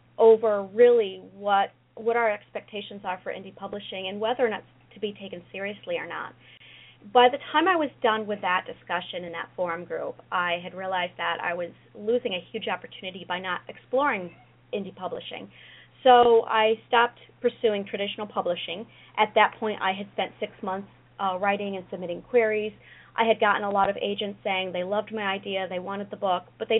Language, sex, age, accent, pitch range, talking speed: English, female, 30-49, American, 185-230 Hz, 195 wpm